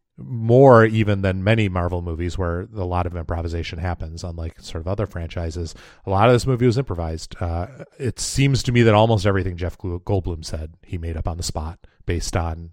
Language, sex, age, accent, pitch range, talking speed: English, male, 30-49, American, 90-110 Hz, 205 wpm